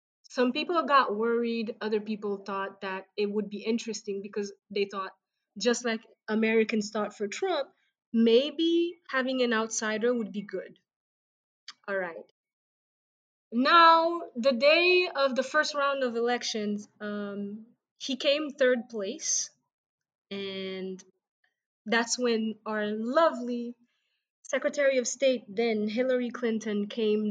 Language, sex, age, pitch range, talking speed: English, female, 20-39, 205-240 Hz, 125 wpm